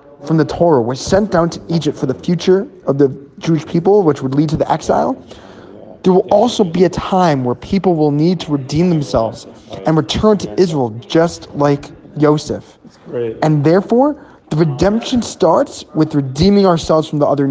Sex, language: male, English